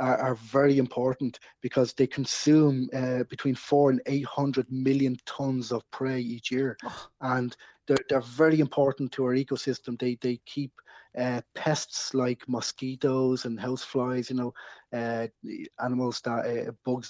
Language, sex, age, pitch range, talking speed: English, male, 20-39, 120-135 Hz, 150 wpm